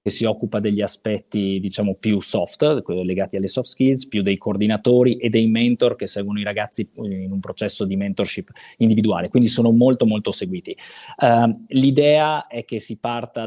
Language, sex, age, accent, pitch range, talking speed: Italian, male, 20-39, native, 100-120 Hz, 175 wpm